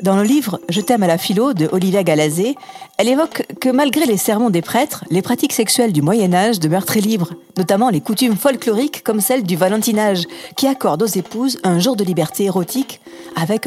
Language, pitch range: French, 180-245 Hz